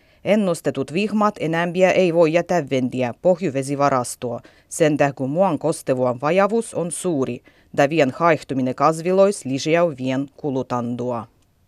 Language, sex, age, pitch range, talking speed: Finnish, female, 30-49, 135-195 Hz, 110 wpm